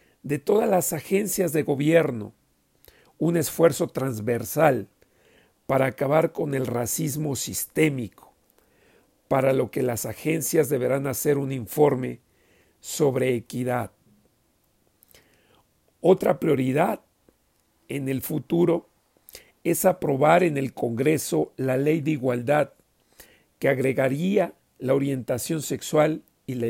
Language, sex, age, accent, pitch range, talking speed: Spanish, male, 50-69, Mexican, 125-155 Hz, 105 wpm